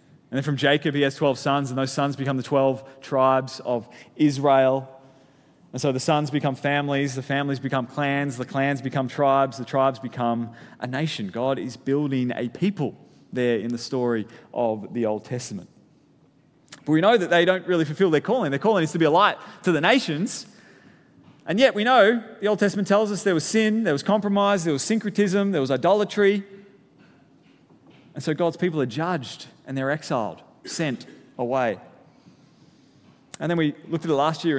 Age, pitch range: 20-39, 130-160 Hz